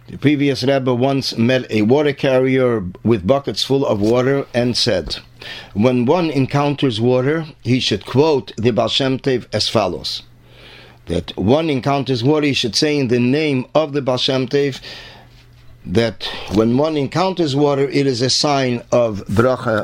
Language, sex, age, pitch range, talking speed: English, male, 50-69, 120-145 Hz, 150 wpm